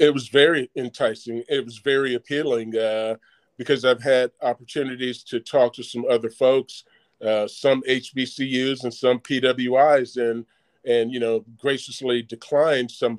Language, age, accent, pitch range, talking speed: English, 40-59, American, 120-145 Hz, 145 wpm